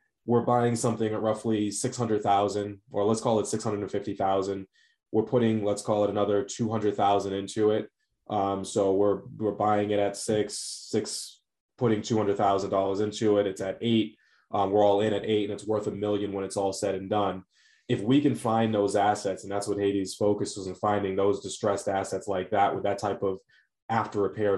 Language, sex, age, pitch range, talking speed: English, male, 20-39, 100-110 Hz, 190 wpm